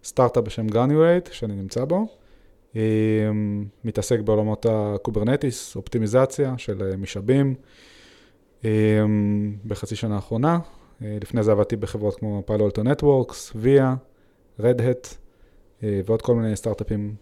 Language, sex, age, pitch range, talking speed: Hebrew, male, 20-39, 105-120 Hz, 110 wpm